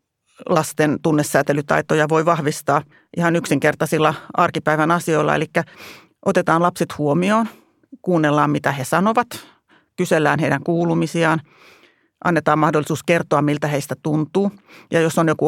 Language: Finnish